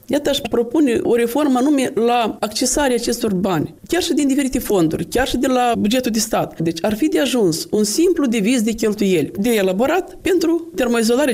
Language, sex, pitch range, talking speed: Romanian, female, 195-255 Hz, 190 wpm